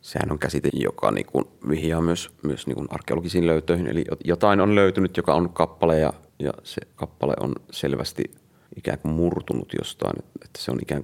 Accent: native